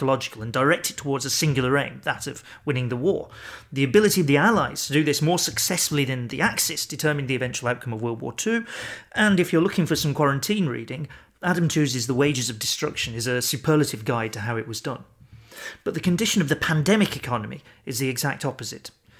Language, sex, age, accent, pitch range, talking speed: English, male, 40-59, British, 125-160 Hz, 210 wpm